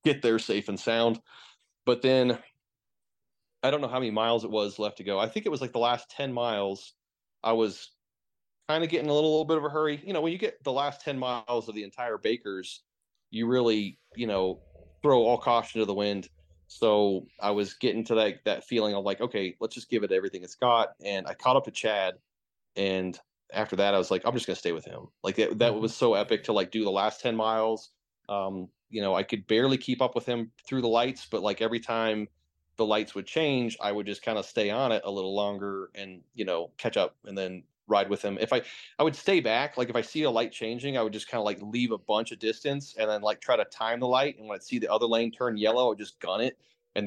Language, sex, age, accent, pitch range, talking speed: English, male, 30-49, American, 100-125 Hz, 260 wpm